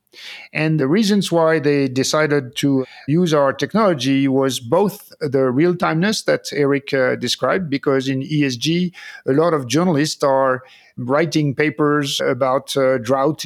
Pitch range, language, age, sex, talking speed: 135-160 Hz, English, 50-69, male, 140 wpm